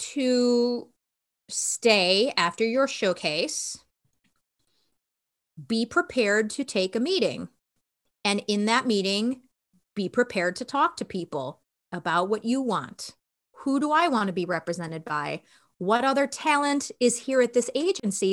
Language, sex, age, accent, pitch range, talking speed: English, female, 30-49, American, 185-250 Hz, 135 wpm